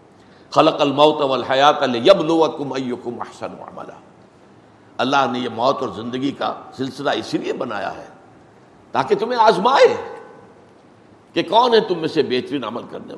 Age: 60-79